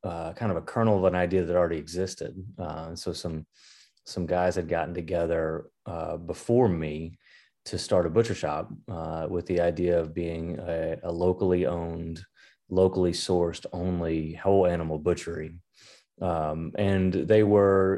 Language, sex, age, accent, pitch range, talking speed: English, male, 30-49, American, 85-95 Hz, 155 wpm